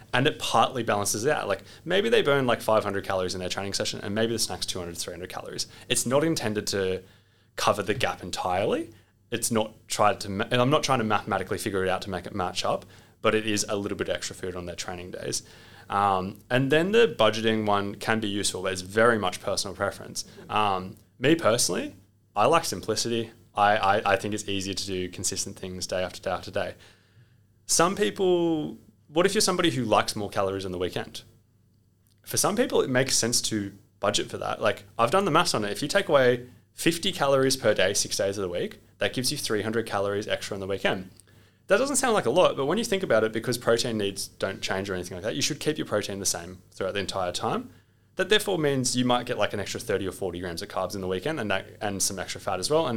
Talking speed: 240 wpm